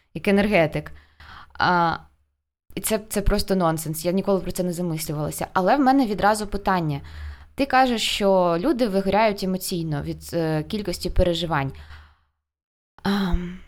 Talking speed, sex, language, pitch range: 130 wpm, female, Ukrainian, 170-215 Hz